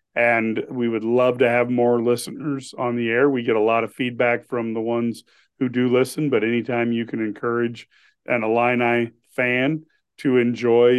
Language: English